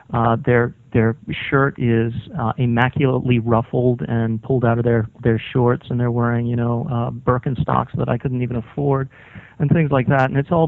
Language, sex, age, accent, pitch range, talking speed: English, male, 40-59, American, 120-145 Hz, 190 wpm